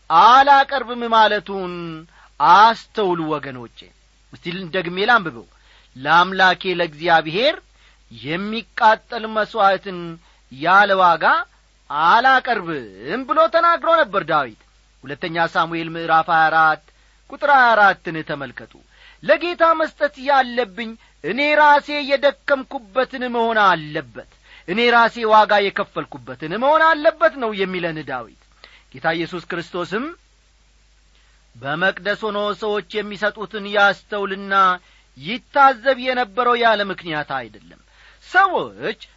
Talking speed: 85 wpm